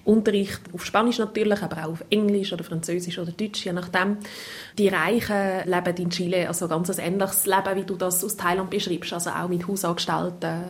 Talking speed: 190 wpm